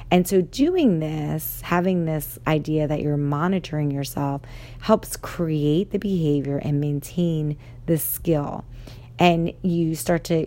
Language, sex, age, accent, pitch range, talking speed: English, female, 30-49, American, 145-170 Hz, 130 wpm